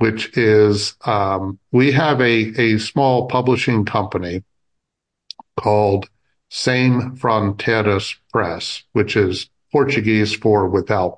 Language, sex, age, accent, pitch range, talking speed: English, male, 50-69, American, 95-115 Hz, 100 wpm